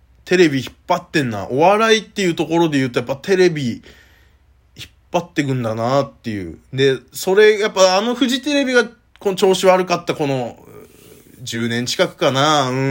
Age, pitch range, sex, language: 20-39, 100-165 Hz, male, Japanese